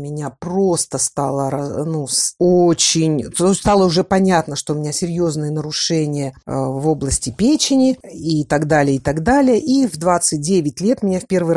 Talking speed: 150 wpm